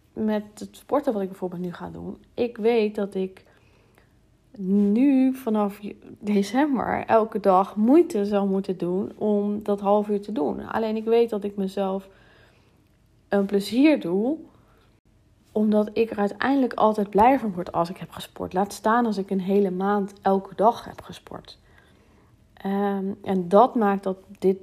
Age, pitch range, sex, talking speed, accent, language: 40-59, 175-215 Hz, female, 160 wpm, Dutch, Dutch